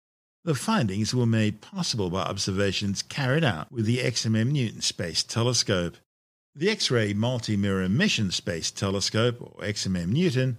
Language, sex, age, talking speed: English, male, 50-69, 125 wpm